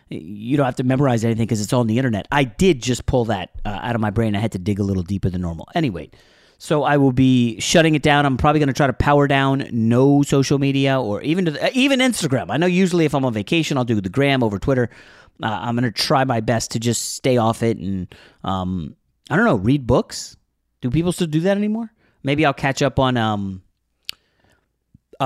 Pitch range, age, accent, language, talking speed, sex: 110-145 Hz, 30-49, American, English, 240 wpm, male